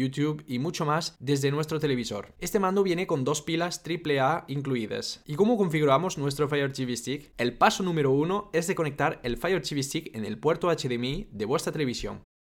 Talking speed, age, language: 195 wpm, 20-39, Spanish